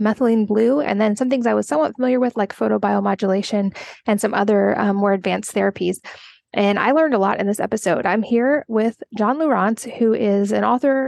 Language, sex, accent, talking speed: English, female, American, 200 wpm